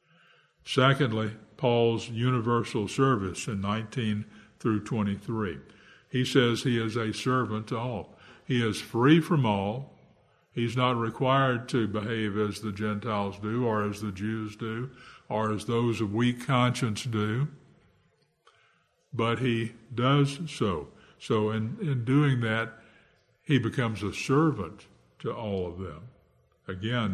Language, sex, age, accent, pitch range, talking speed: English, male, 60-79, American, 105-125 Hz, 135 wpm